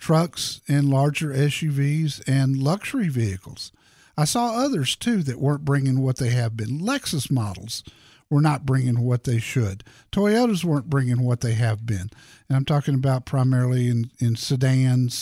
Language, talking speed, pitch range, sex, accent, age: English, 160 wpm, 130-180 Hz, male, American, 50-69